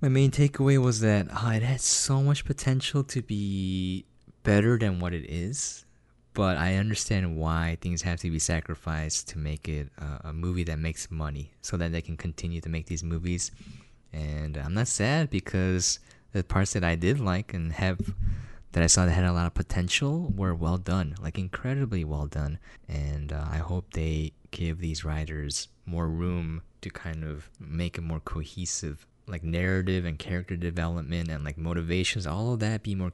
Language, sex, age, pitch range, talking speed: English, male, 20-39, 80-100 Hz, 190 wpm